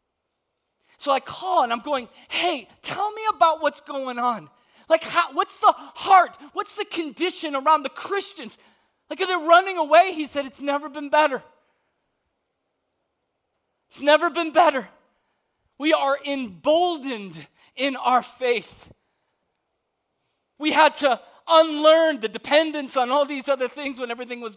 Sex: male